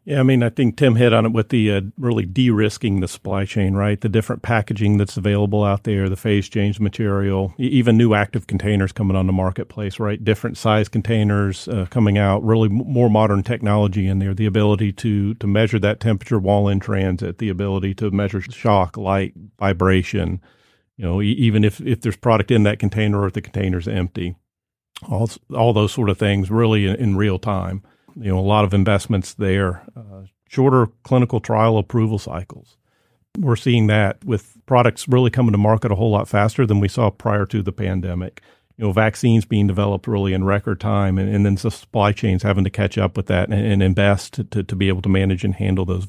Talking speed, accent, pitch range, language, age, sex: 210 wpm, American, 95-110 Hz, English, 50-69, male